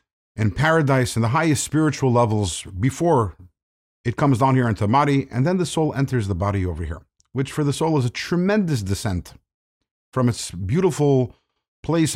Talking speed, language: 175 wpm, English